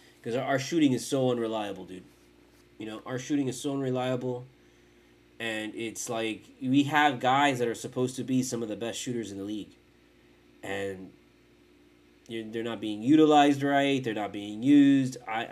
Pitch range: 110-155 Hz